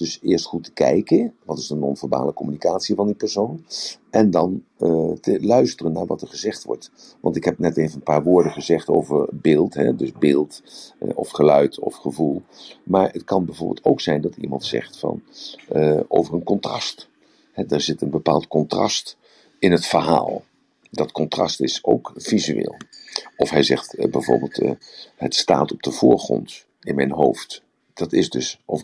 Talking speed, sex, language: 175 wpm, male, Dutch